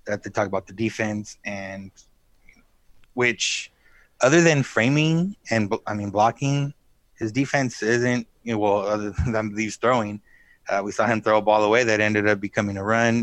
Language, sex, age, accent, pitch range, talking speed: English, male, 20-39, American, 105-120 Hz, 175 wpm